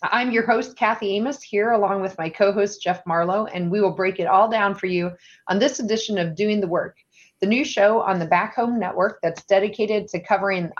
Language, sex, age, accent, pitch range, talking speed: English, female, 30-49, American, 175-210 Hz, 220 wpm